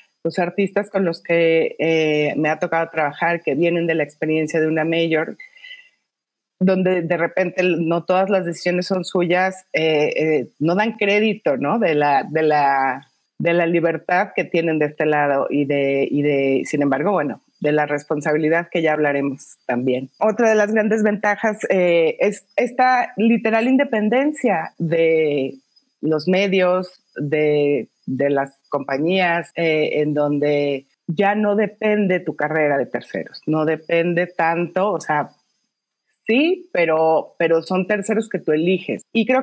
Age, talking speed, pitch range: 30-49, 155 wpm, 155-200 Hz